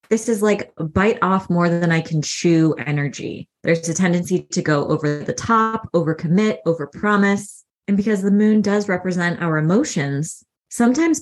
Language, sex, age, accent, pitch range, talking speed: English, female, 20-39, American, 160-205 Hz, 175 wpm